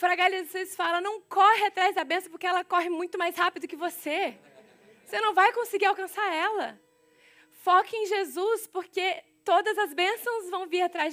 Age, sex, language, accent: 20-39, female, Portuguese, Brazilian